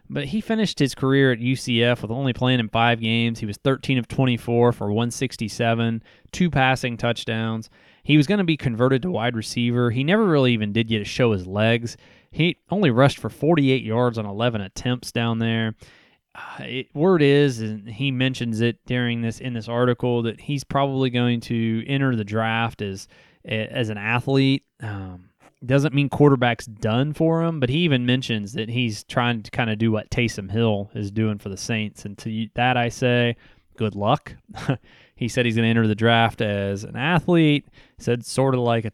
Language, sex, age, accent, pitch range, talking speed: English, male, 20-39, American, 110-135 Hz, 195 wpm